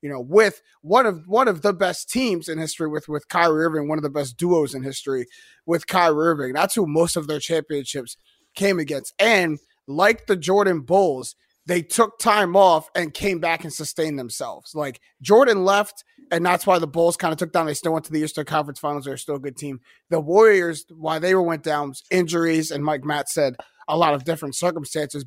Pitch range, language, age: 150-185 Hz, English, 30-49